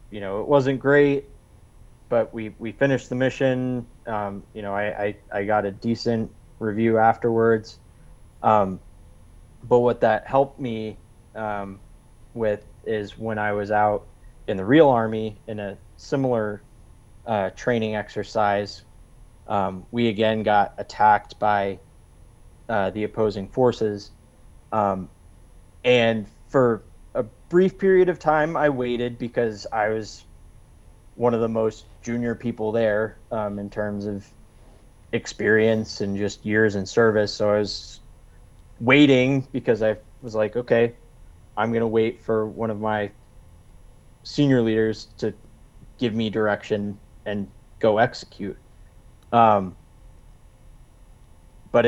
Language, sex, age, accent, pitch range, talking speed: English, male, 30-49, American, 100-115 Hz, 130 wpm